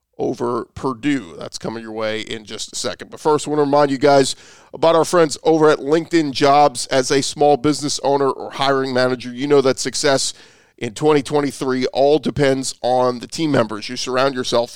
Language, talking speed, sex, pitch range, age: English, 195 wpm, male, 125-150 Hz, 40-59